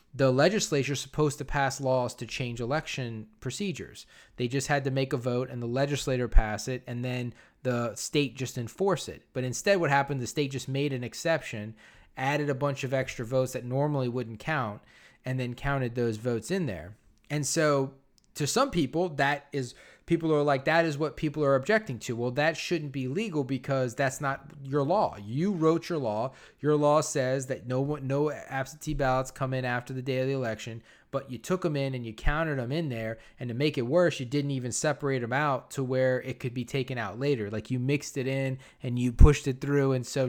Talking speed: 220 wpm